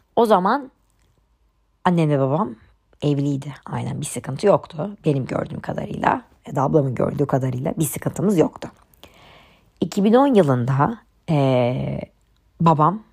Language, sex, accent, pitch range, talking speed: Turkish, male, native, 135-170 Hz, 110 wpm